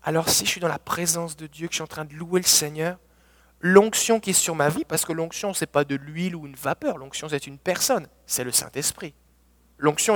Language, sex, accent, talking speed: French, male, French, 250 wpm